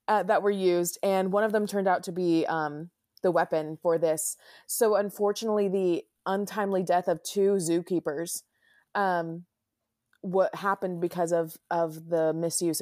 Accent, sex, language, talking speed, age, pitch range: American, female, English, 155 wpm, 20-39, 165-195 Hz